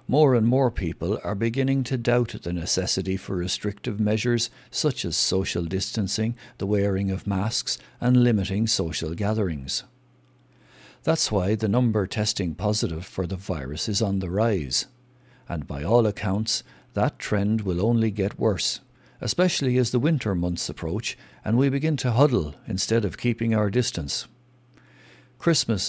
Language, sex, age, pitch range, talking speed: English, male, 60-79, 95-120 Hz, 150 wpm